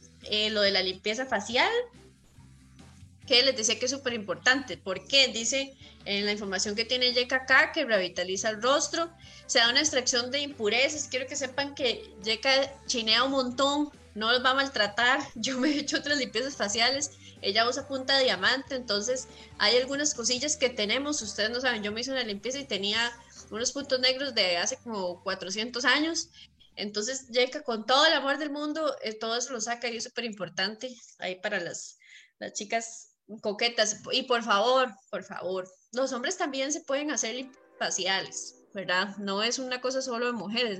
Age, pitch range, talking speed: 20-39, 210-270 Hz, 180 wpm